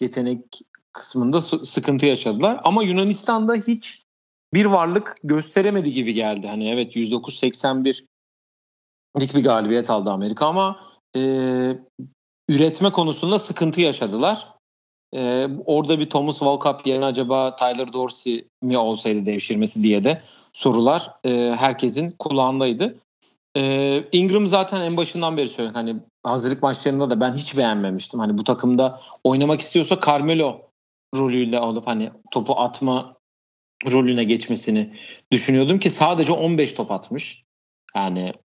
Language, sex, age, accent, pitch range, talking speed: Turkish, male, 40-59, native, 120-155 Hz, 120 wpm